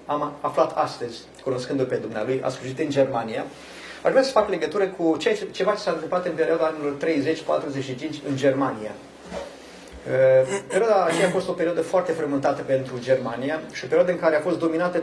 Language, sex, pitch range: Romanian, male, 140-185 Hz